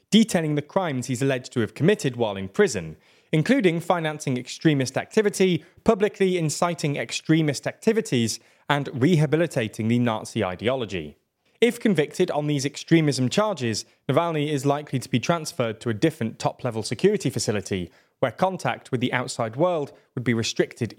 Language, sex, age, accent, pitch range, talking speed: English, male, 20-39, British, 120-170 Hz, 145 wpm